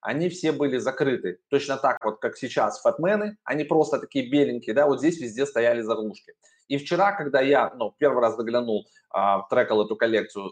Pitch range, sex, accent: 120-160 Hz, male, native